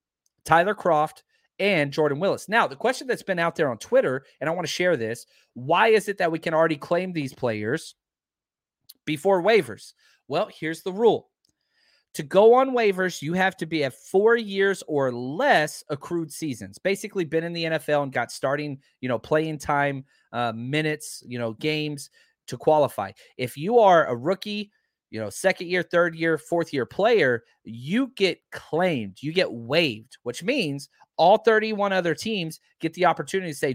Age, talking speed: 30-49, 180 wpm